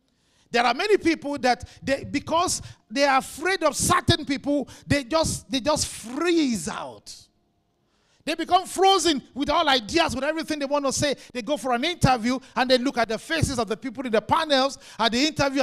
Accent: Nigerian